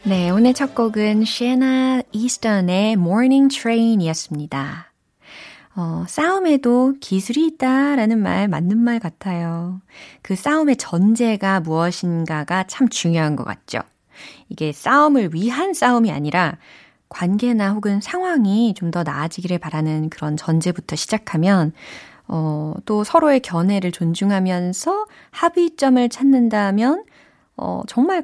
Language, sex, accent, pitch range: Korean, female, native, 170-245 Hz